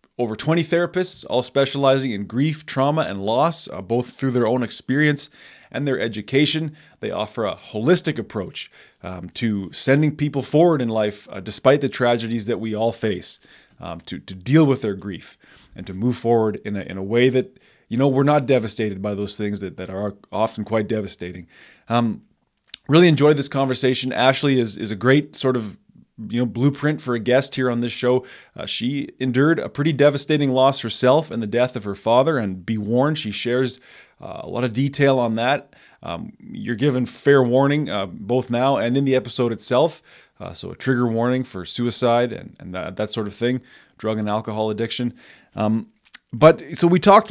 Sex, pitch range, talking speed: male, 110-140 Hz, 195 wpm